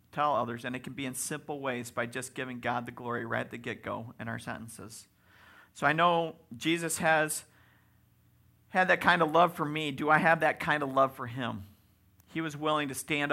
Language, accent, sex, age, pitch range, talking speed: English, American, male, 50-69, 120-165 Hz, 215 wpm